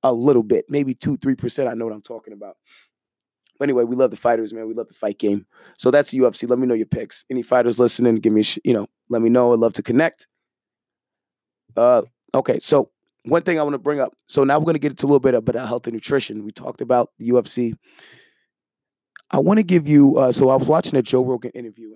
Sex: male